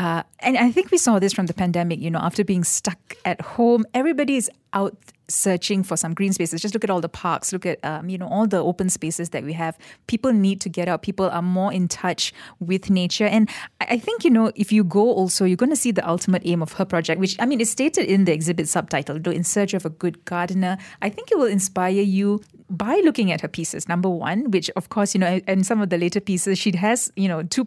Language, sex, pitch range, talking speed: English, female, 175-210 Hz, 255 wpm